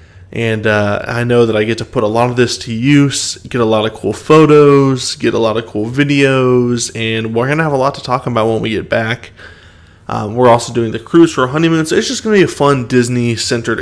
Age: 20-39